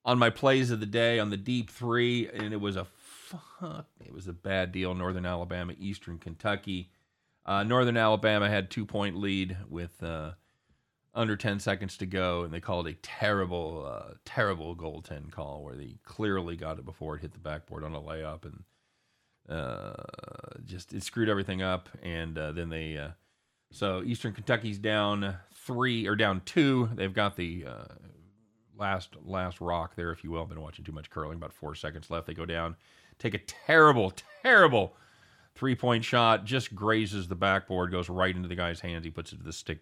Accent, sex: American, male